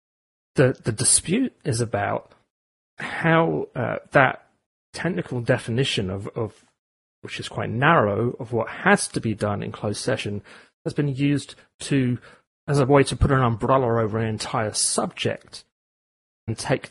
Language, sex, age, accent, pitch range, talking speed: English, male, 30-49, British, 110-140 Hz, 150 wpm